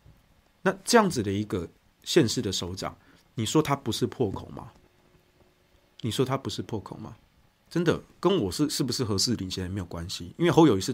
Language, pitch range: Chinese, 115-185 Hz